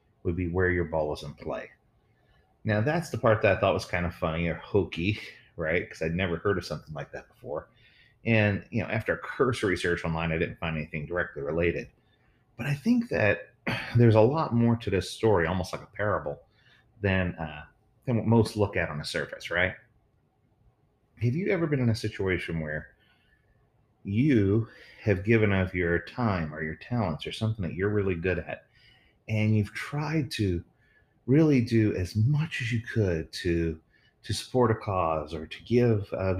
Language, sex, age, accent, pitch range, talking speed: English, male, 30-49, American, 85-115 Hz, 190 wpm